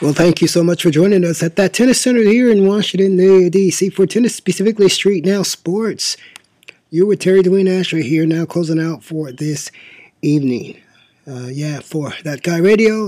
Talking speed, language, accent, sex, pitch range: 190 wpm, English, American, male, 155-190 Hz